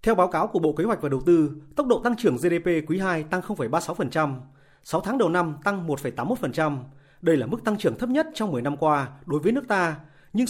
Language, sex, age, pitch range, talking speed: Vietnamese, male, 30-49, 145-215 Hz, 235 wpm